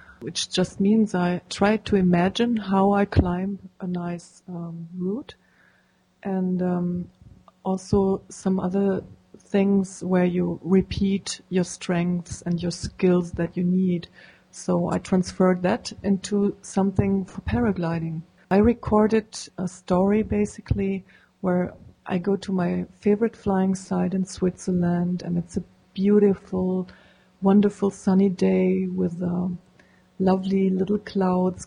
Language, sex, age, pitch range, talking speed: English, female, 30-49, 180-200 Hz, 125 wpm